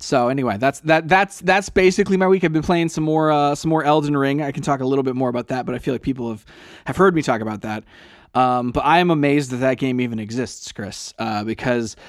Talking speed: 265 wpm